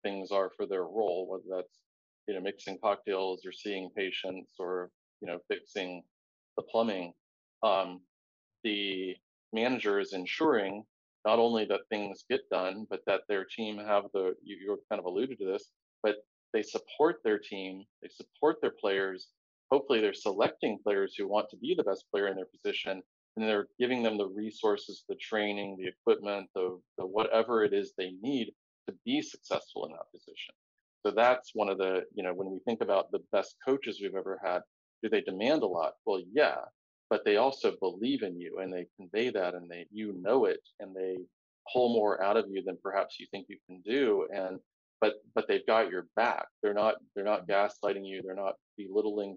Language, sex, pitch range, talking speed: English, male, 95-150 Hz, 195 wpm